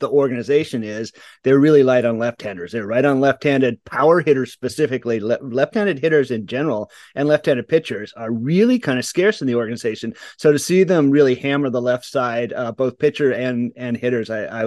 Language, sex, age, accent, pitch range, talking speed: English, male, 30-49, American, 120-145 Hz, 195 wpm